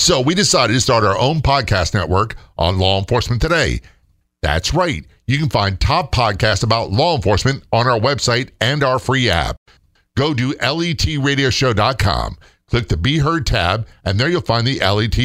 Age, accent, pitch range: 50-69, American, 100-130 Hz